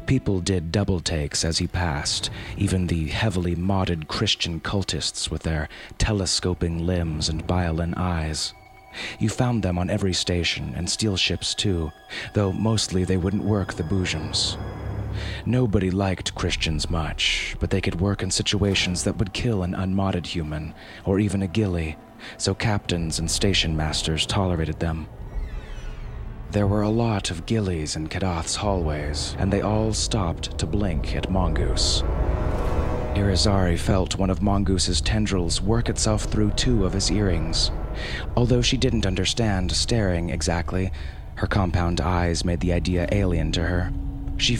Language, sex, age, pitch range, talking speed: English, male, 30-49, 80-100 Hz, 145 wpm